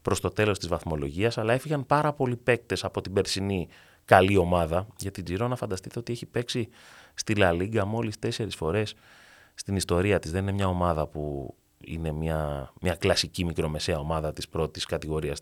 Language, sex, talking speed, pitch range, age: Greek, male, 170 wpm, 80-110 Hz, 30-49